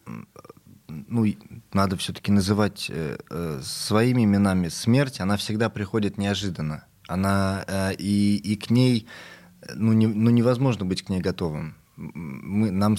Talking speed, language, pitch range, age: 125 wpm, Russian, 95-120 Hz, 20-39